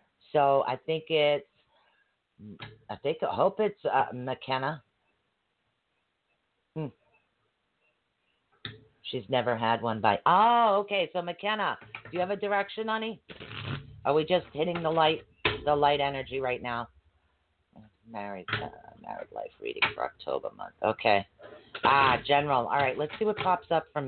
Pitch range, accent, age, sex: 115-150 Hz, American, 40-59, female